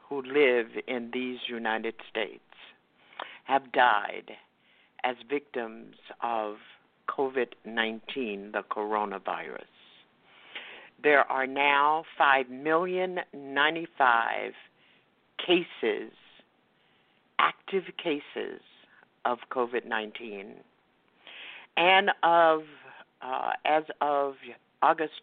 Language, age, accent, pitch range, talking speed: English, 60-79, American, 125-160 Hz, 70 wpm